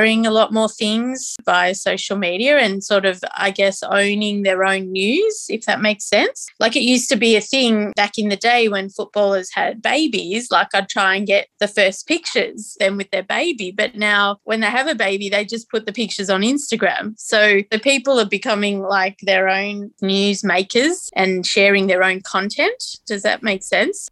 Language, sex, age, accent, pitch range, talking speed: English, female, 20-39, Australian, 195-220 Hz, 200 wpm